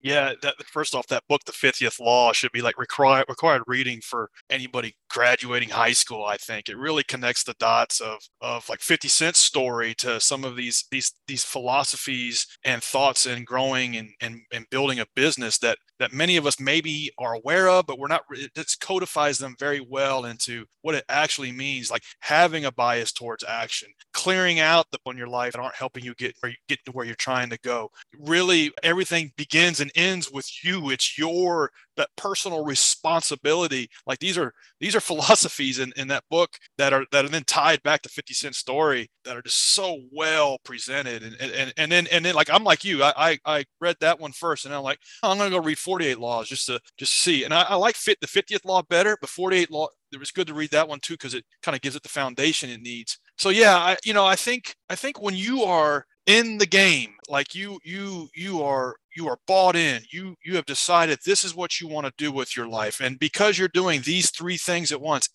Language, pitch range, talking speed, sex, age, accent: English, 130-175 Hz, 230 wpm, male, 30-49, American